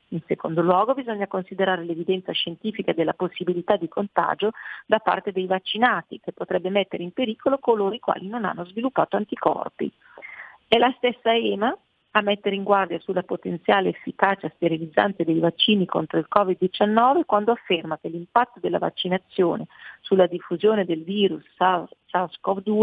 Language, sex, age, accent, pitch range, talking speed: Italian, female, 40-59, native, 180-230 Hz, 145 wpm